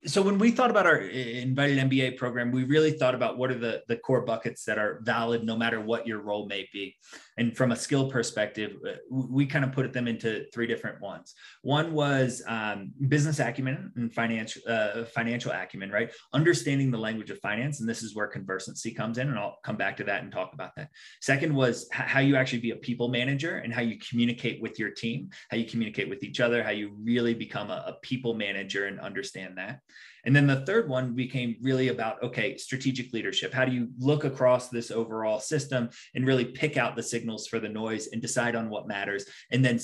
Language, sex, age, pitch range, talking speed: English, male, 20-39, 115-135 Hz, 215 wpm